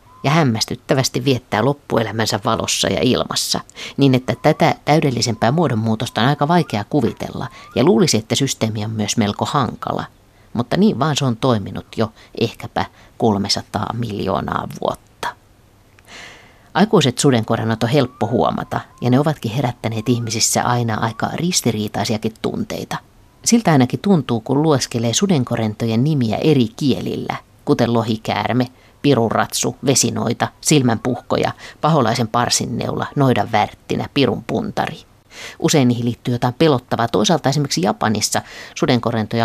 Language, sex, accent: Finnish, female, native